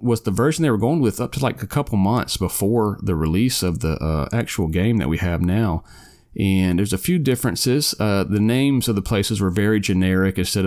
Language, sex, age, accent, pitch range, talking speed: English, male, 30-49, American, 85-105 Hz, 225 wpm